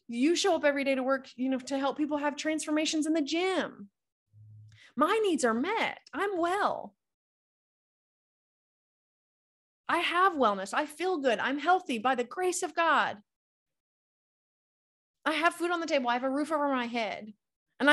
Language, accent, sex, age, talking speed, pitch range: English, American, female, 30-49, 165 wpm, 220-290 Hz